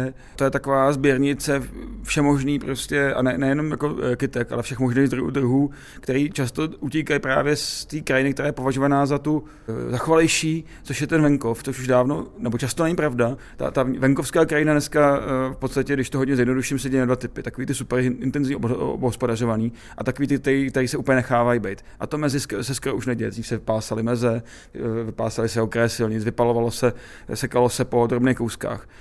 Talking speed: 185 wpm